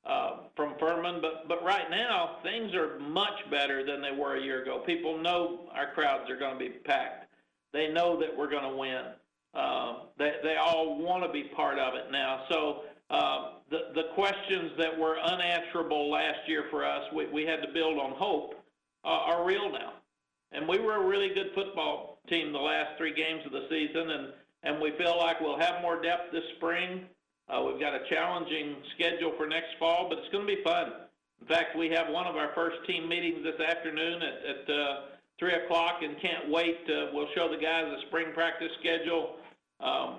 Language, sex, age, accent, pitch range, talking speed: English, male, 50-69, American, 155-175 Hz, 205 wpm